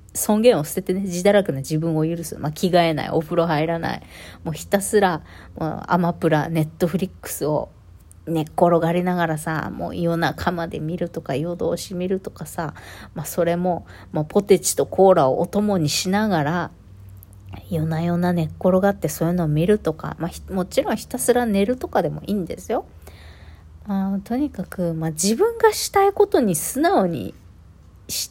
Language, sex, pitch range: Japanese, female, 155-205 Hz